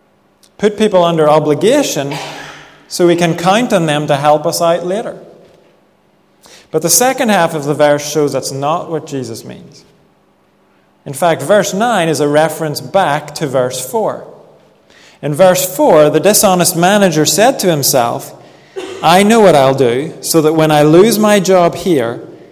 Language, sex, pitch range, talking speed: English, male, 145-185 Hz, 165 wpm